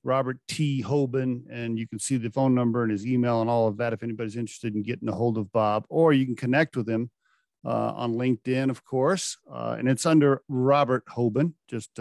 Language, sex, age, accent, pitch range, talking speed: English, male, 50-69, American, 110-155 Hz, 220 wpm